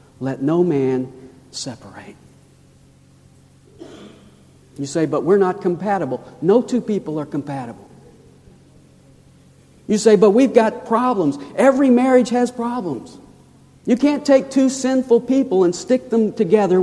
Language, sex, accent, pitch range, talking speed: English, male, American, 150-215 Hz, 125 wpm